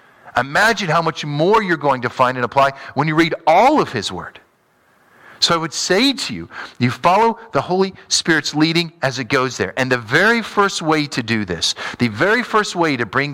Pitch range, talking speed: 130-190 Hz, 210 wpm